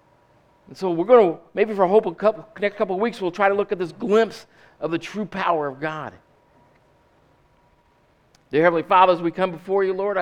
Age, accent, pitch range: 50-69, American, 120-170 Hz